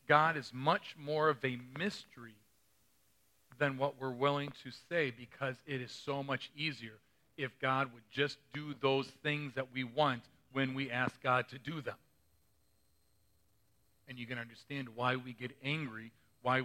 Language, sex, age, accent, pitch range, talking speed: English, male, 40-59, American, 125-160 Hz, 160 wpm